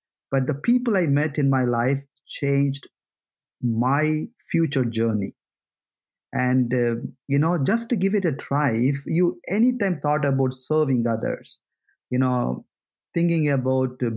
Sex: male